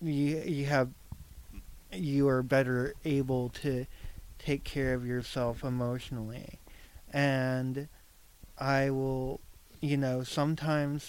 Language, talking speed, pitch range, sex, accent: English, 105 wpm, 120-140 Hz, male, American